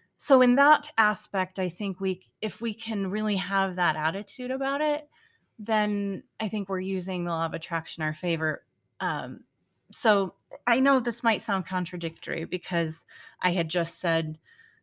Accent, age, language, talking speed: American, 30-49, English, 165 wpm